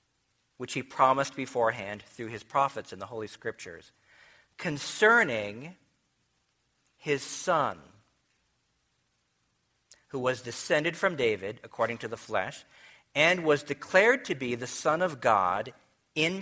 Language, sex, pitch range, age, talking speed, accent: English, male, 115-150 Hz, 50-69, 120 wpm, American